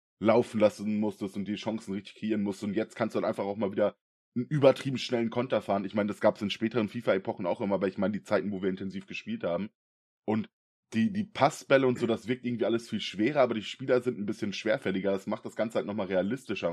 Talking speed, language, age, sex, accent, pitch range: 250 wpm, German, 20-39, male, German, 95-115 Hz